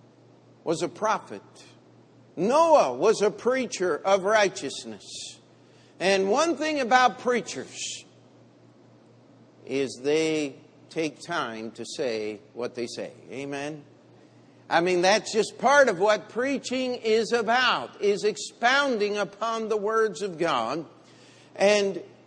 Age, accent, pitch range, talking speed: 60-79, American, 170-215 Hz, 115 wpm